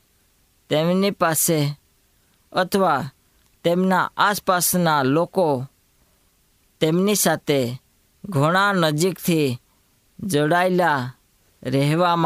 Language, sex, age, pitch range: Hindi, female, 20-39, 130-180 Hz